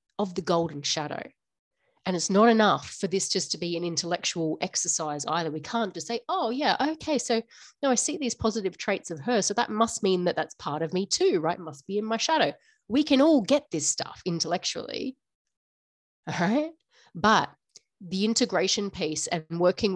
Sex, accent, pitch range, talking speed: female, Australian, 165-220 Hz, 190 wpm